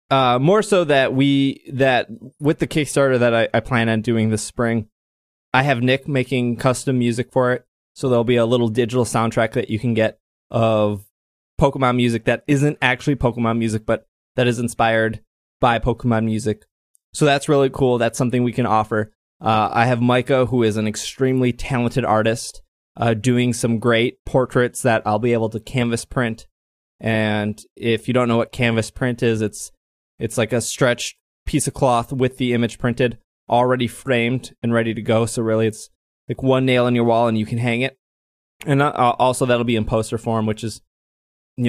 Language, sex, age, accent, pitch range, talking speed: English, male, 20-39, American, 115-135 Hz, 190 wpm